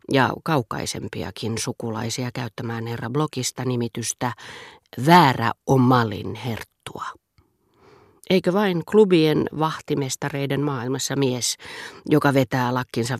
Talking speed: 85 wpm